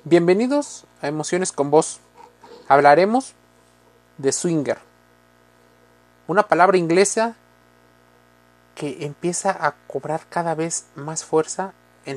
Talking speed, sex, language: 100 wpm, male, Spanish